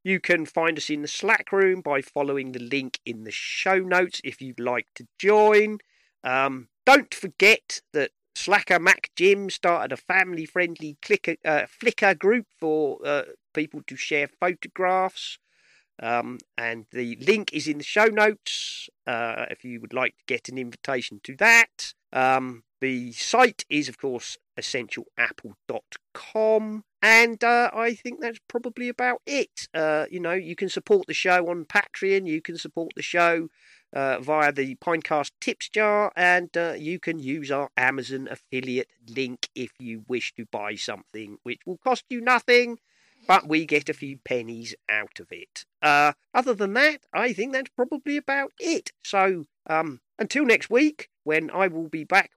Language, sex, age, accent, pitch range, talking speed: English, male, 40-59, British, 135-215 Hz, 165 wpm